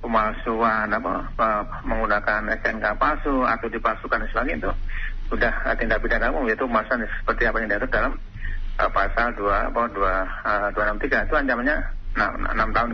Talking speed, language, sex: 150 wpm, Indonesian, male